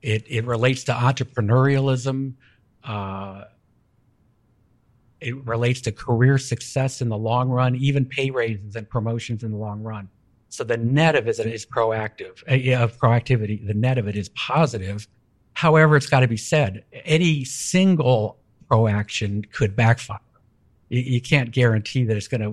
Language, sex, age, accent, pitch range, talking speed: English, male, 60-79, American, 105-125 Hz, 155 wpm